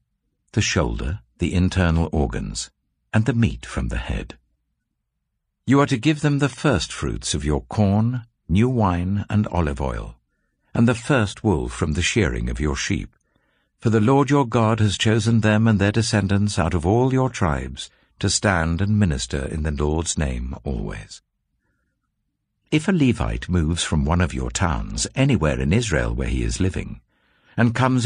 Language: English